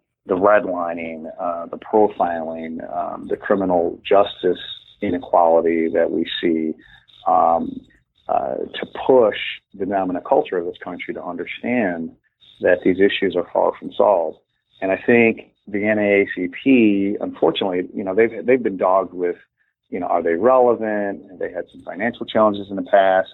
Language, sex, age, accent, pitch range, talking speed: English, male, 30-49, American, 90-110 Hz, 150 wpm